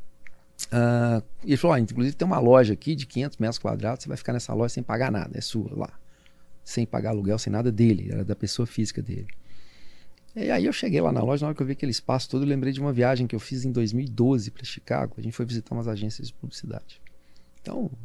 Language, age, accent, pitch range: Portuguese, 40-59, Brazilian, 105-135 Hz